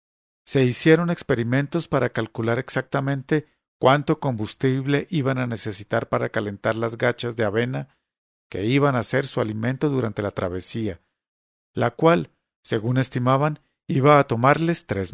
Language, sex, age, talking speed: English, male, 50-69, 135 wpm